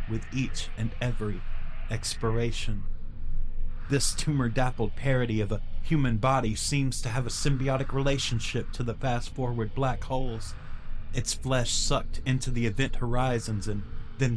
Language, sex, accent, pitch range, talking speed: English, male, American, 110-130 Hz, 135 wpm